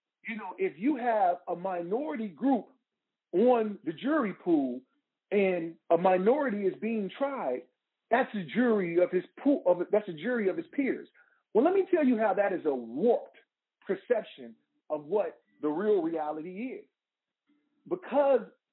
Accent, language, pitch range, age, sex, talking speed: American, English, 165-235 Hz, 40-59, male, 155 wpm